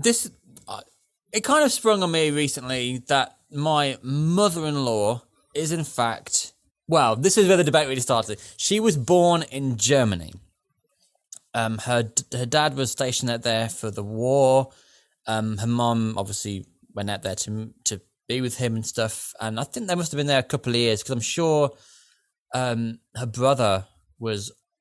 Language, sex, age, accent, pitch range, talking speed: English, male, 20-39, British, 105-160 Hz, 175 wpm